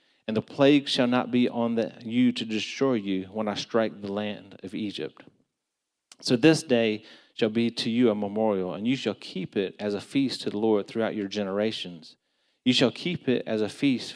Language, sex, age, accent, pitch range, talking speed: English, male, 40-59, American, 110-135 Hz, 205 wpm